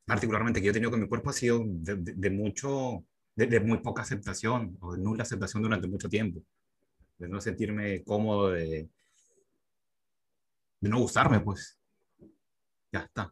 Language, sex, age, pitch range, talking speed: Spanish, male, 30-49, 95-120 Hz, 160 wpm